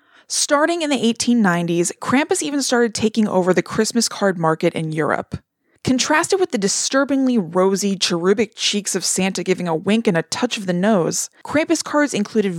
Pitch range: 185-245 Hz